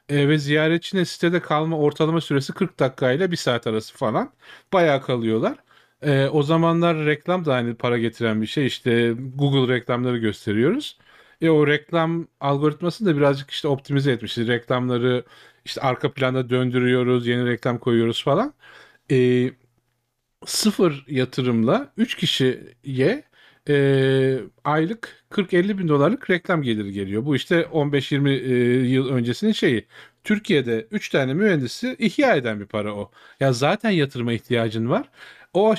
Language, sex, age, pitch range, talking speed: Turkish, male, 40-59, 125-165 Hz, 140 wpm